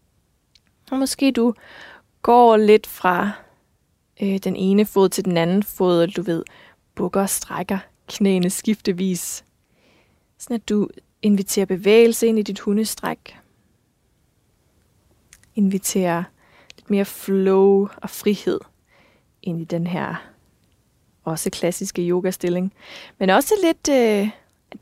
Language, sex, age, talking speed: Danish, female, 20-39, 115 wpm